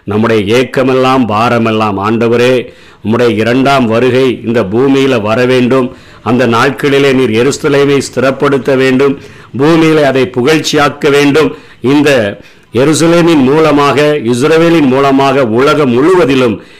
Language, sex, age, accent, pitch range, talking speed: Tamil, male, 50-69, native, 120-145 Hz, 100 wpm